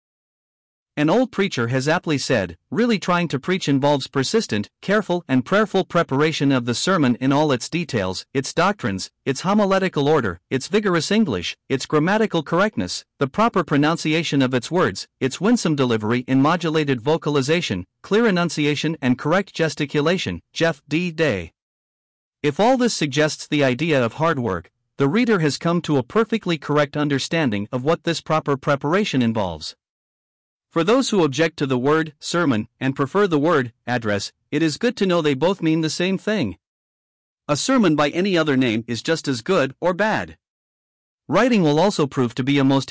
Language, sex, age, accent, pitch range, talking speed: English, male, 50-69, American, 130-175 Hz, 170 wpm